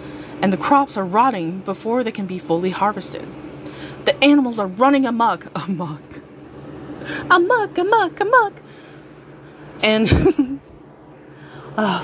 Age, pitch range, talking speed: 20-39, 175-250 Hz, 110 wpm